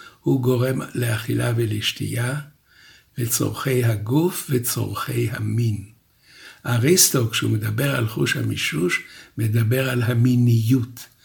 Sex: male